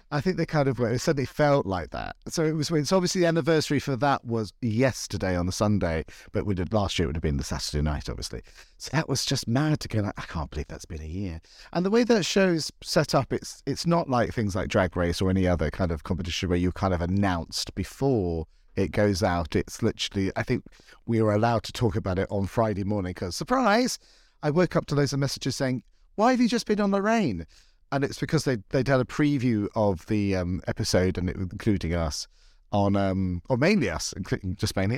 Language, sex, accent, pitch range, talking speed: English, male, British, 95-140 Hz, 235 wpm